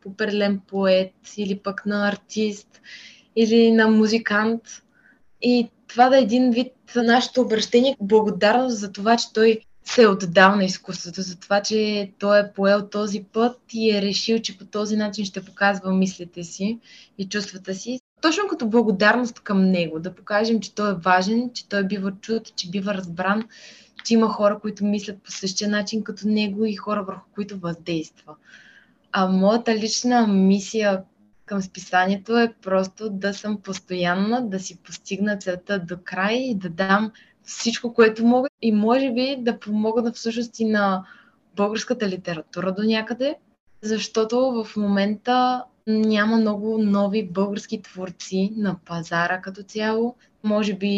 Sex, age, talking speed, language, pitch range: female, 20-39, 155 wpm, Bulgarian, 195-225 Hz